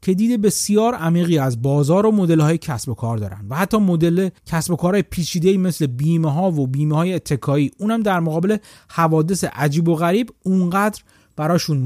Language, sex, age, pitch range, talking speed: Persian, male, 30-49, 130-190 Hz, 170 wpm